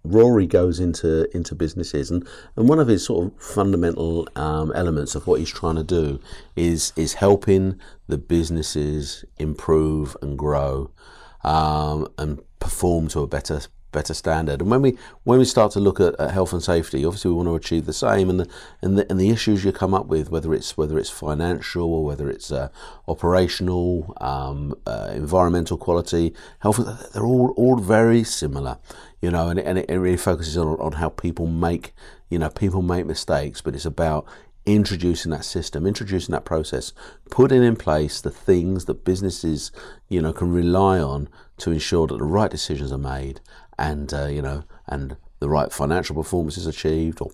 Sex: male